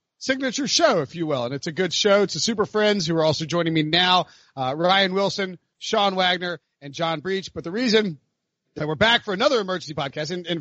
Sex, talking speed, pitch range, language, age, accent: male, 225 wpm, 165-215 Hz, English, 40-59, American